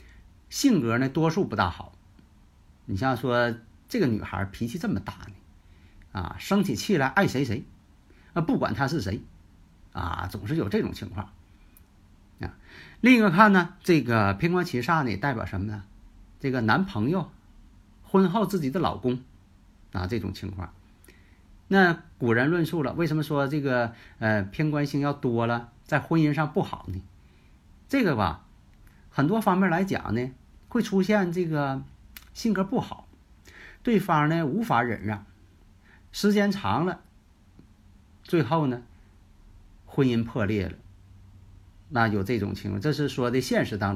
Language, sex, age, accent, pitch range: Chinese, male, 50-69, native, 95-145 Hz